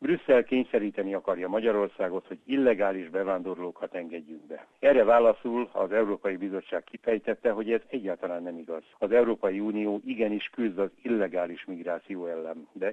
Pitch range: 90-110 Hz